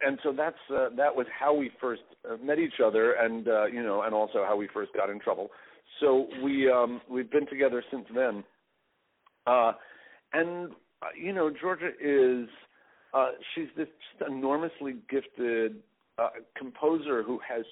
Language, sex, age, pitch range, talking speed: English, male, 50-69, 120-165 Hz, 165 wpm